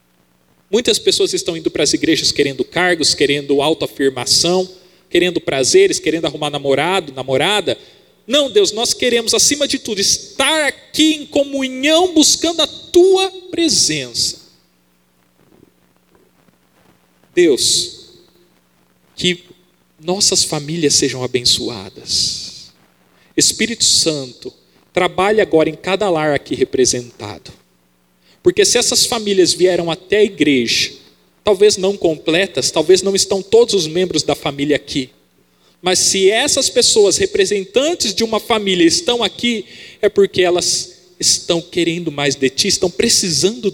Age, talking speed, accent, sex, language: 40-59, 120 wpm, Brazilian, male, Portuguese